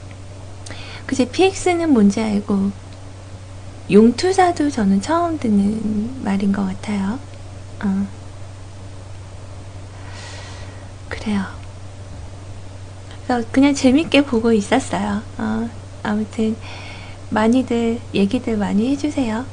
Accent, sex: native, female